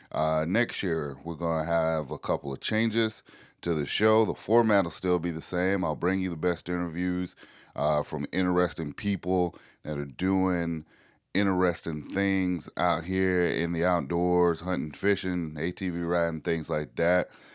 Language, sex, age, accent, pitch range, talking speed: English, male, 30-49, American, 85-100 Hz, 165 wpm